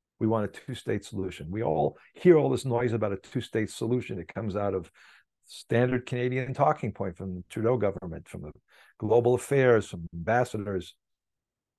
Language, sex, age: English, male, 50-69